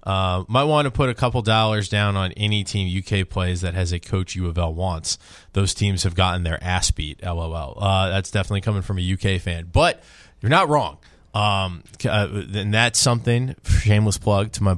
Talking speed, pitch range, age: 195 wpm, 85-100 Hz, 20-39